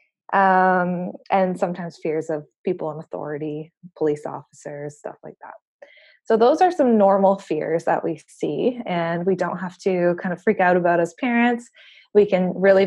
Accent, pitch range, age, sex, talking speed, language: American, 170-220 Hz, 20-39, female, 175 wpm, English